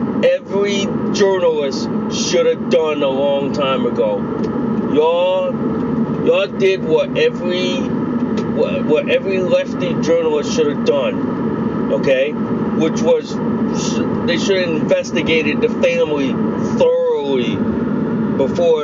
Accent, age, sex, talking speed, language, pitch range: American, 40-59, male, 105 wpm, English, 220-250 Hz